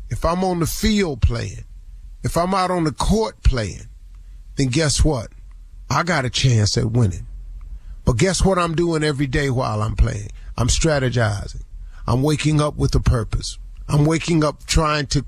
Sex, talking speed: male, 175 wpm